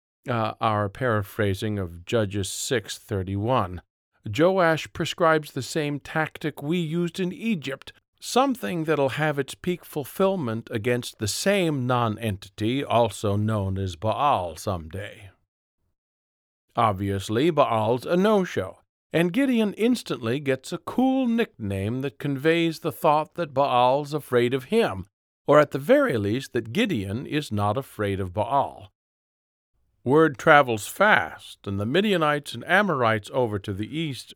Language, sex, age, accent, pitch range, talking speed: English, male, 50-69, American, 105-160 Hz, 130 wpm